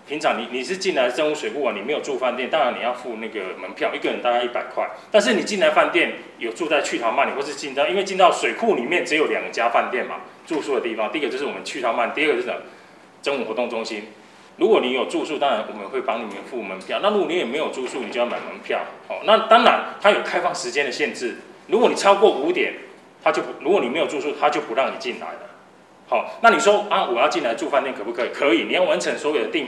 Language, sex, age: Chinese, male, 20-39